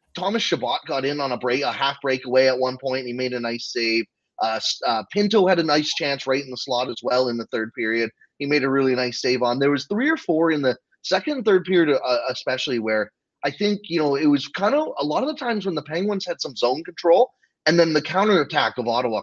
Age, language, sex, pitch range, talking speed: 30-49, English, male, 125-185 Hz, 260 wpm